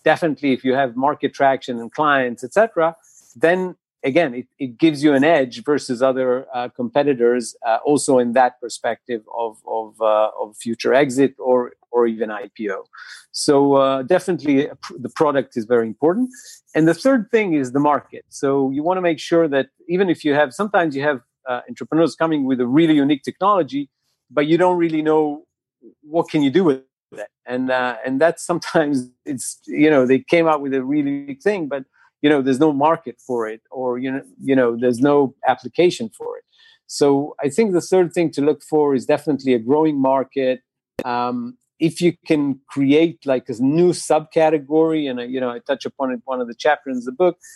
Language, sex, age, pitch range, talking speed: English, male, 50-69, 125-160 Hz, 200 wpm